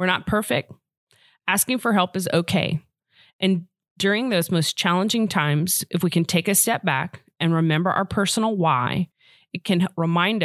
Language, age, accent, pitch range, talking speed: English, 30-49, American, 165-205 Hz, 165 wpm